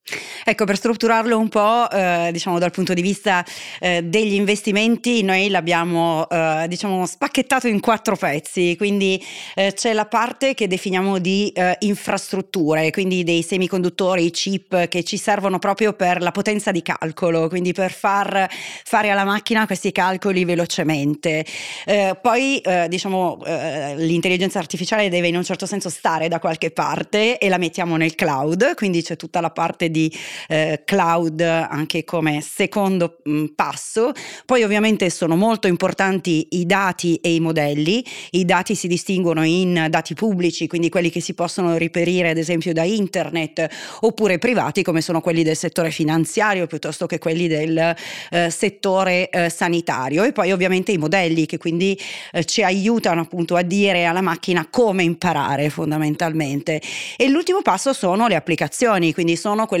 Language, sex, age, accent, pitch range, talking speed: Italian, female, 30-49, native, 165-200 Hz, 160 wpm